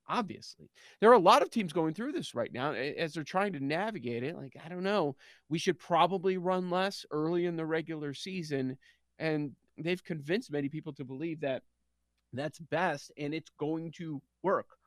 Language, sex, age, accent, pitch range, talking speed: English, male, 40-59, American, 150-220 Hz, 190 wpm